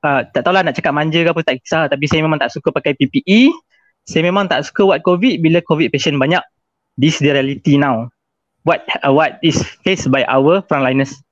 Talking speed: 205 wpm